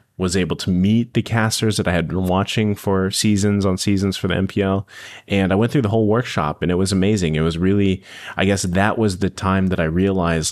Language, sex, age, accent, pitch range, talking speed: English, male, 30-49, American, 90-110 Hz, 235 wpm